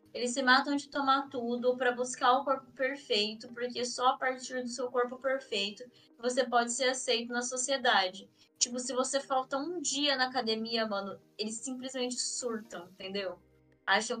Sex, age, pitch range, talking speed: female, 10-29, 225-265 Hz, 165 wpm